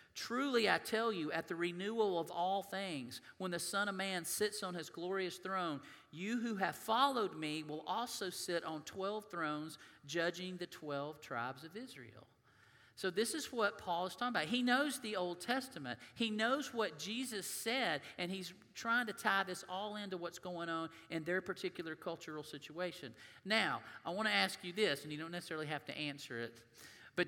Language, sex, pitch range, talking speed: English, male, 155-210 Hz, 190 wpm